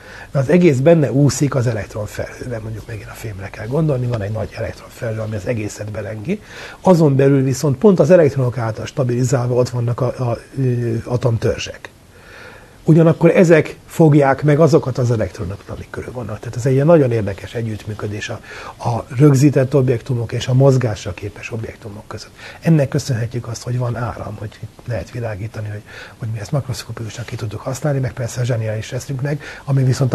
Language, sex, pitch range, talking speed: Hungarian, male, 110-140 Hz, 165 wpm